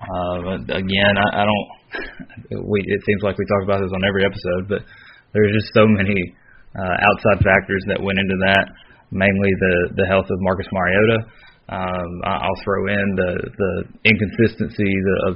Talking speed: 170 wpm